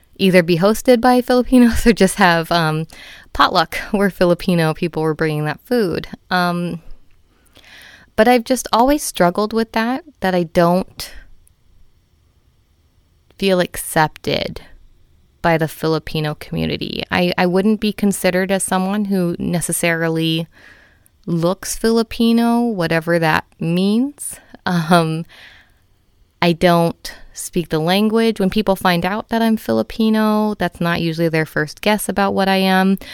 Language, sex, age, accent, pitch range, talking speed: English, female, 20-39, American, 160-210 Hz, 130 wpm